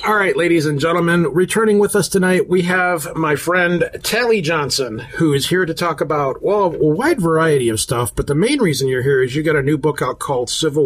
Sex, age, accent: male, 40-59, American